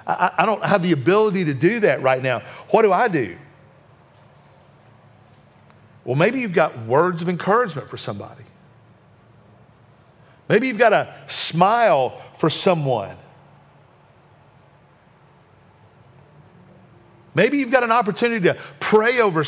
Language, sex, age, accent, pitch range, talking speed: English, male, 50-69, American, 130-210 Hz, 115 wpm